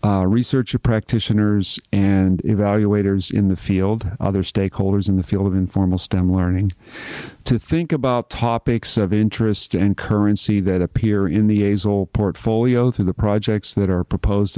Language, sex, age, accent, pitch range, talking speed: English, male, 50-69, American, 100-120 Hz, 150 wpm